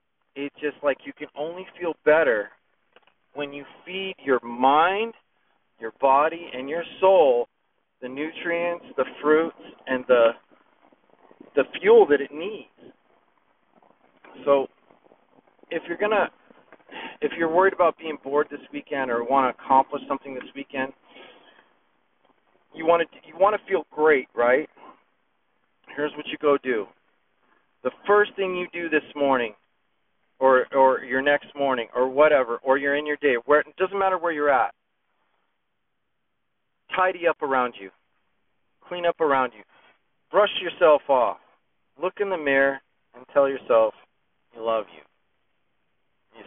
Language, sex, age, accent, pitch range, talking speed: English, male, 40-59, American, 125-170 Hz, 140 wpm